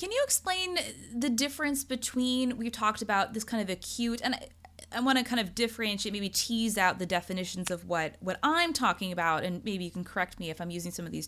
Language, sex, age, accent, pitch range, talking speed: English, female, 20-39, American, 185-245 Hz, 230 wpm